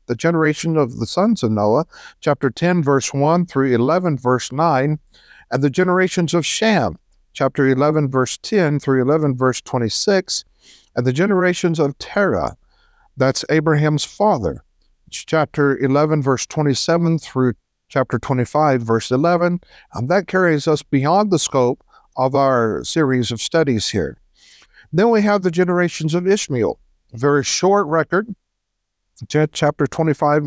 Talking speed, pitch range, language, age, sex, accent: 140 wpm, 130-170 Hz, English, 60-79, male, American